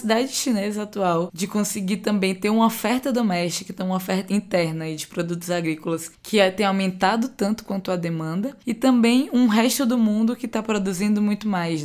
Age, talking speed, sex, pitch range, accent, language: 20-39, 170 wpm, female, 175-225 Hz, Brazilian, Portuguese